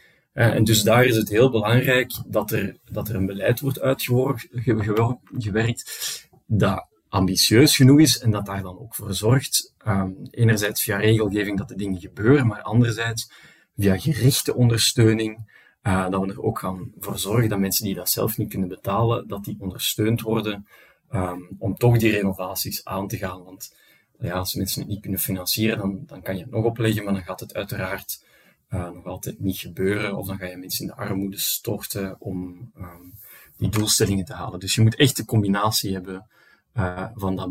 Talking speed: 180 wpm